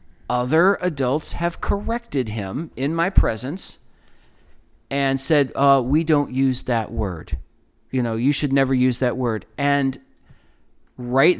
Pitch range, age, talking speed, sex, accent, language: 120-160 Hz, 40-59, 135 wpm, male, American, English